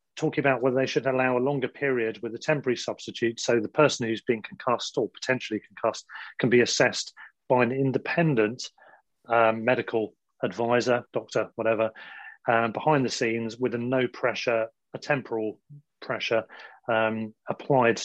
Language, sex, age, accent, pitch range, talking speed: English, male, 30-49, British, 115-135 Hz, 155 wpm